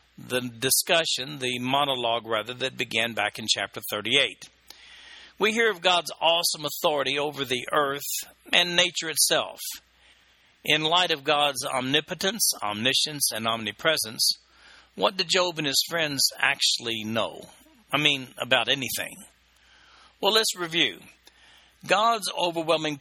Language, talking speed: English, 125 wpm